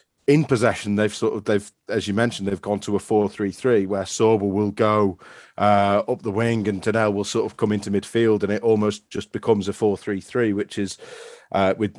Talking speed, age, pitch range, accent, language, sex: 205 wpm, 30-49, 100-115 Hz, British, English, male